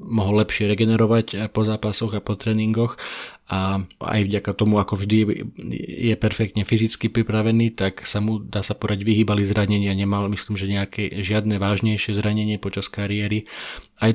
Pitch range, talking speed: 100-110 Hz, 155 wpm